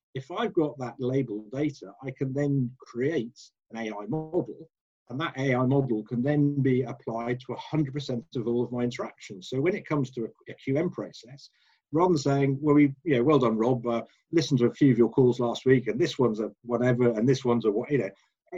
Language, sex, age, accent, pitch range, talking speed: English, male, 50-69, British, 125-155 Hz, 220 wpm